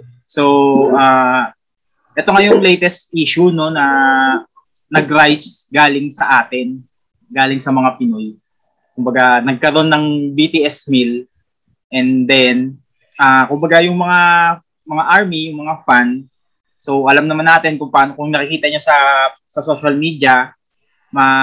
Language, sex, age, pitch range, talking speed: Filipino, male, 20-39, 135-180 Hz, 135 wpm